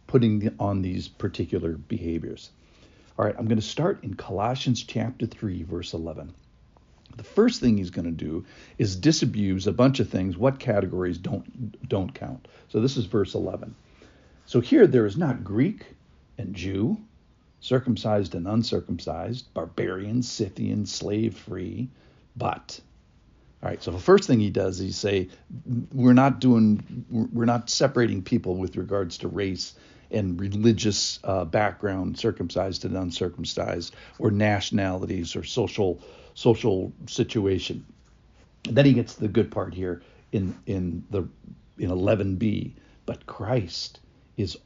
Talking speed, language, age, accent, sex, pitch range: 145 wpm, English, 60-79, American, male, 95-120 Hz